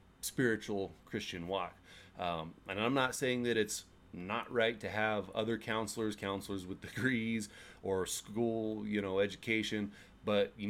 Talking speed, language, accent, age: 145 wpm, English, American, 30-49